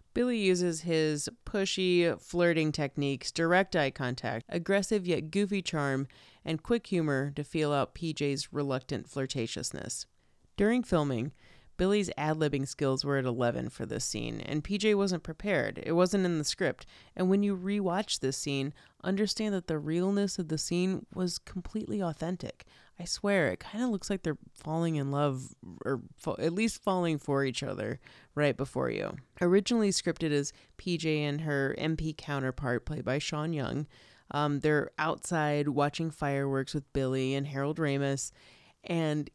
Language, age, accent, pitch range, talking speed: English, 30-49, American, 140-185 Hz, 155 wpm